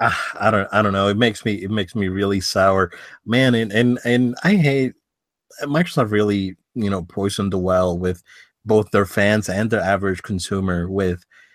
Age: 30-49